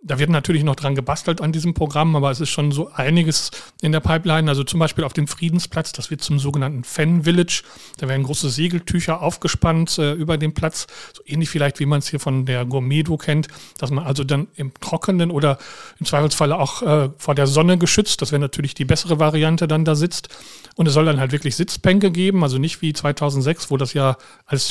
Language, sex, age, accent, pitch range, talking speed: German, male, 40-59, German, 140-160 Hz, 220 wpm